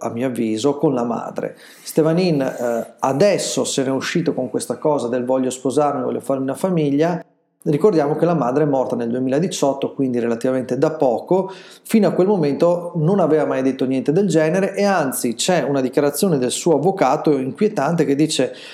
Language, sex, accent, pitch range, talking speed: Italian, male, native, 130-175 Hz, 185 wpm